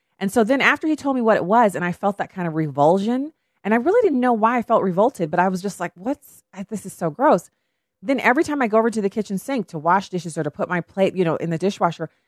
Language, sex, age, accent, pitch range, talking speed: English, female, 30-49, American, 170-235 Hz, 290 wpm